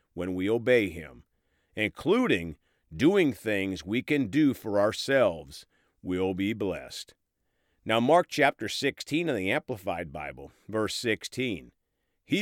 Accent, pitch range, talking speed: American, 95-145 Hz, 125 wpm